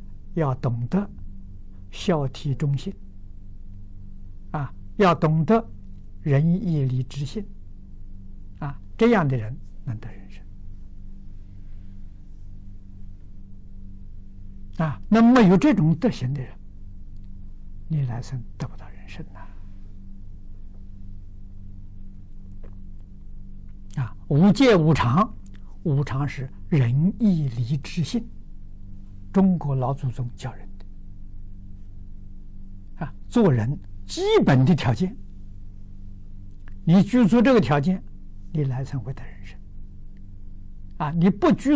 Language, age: Chinese, 60-79